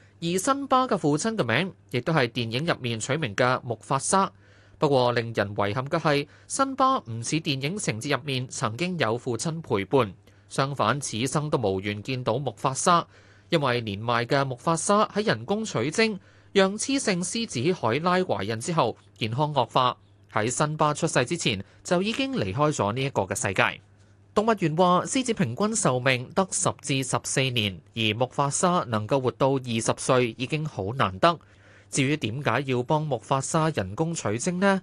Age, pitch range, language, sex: 20-39, 115-170 Hz, Chinese, male